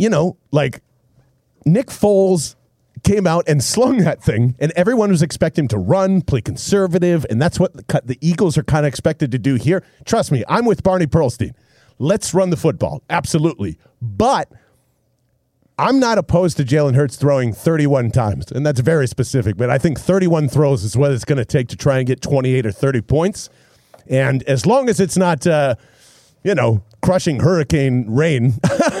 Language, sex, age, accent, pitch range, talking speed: English, male, 40-59, American, 130-175 Hz, 185 wpm